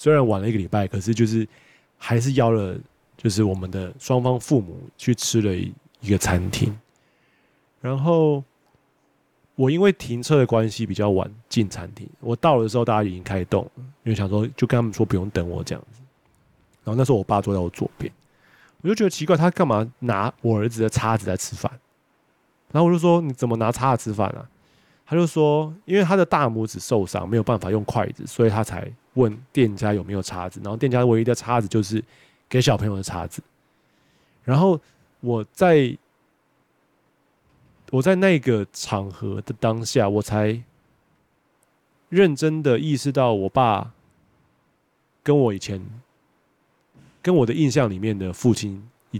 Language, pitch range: Chinese, 105-140 Hz